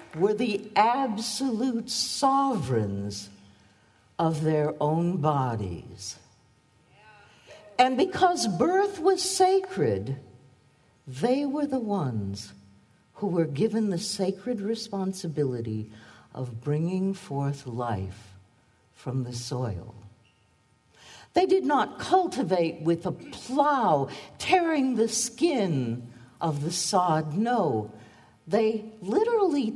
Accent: American